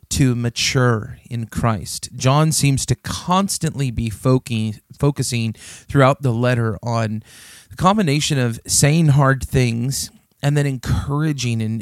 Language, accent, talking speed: English, American, 120 wpm